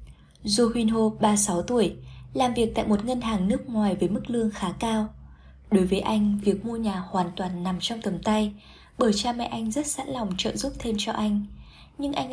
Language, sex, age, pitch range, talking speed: Vietnamese, female, 20-39, 185-230 Hz, 215 wpm